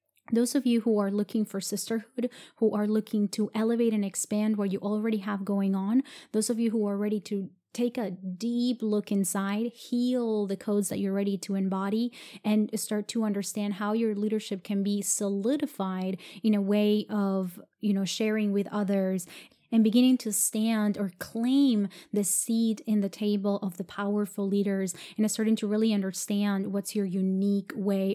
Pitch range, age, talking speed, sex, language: 195-220 Hz, 20-39, 180 wpm, female, English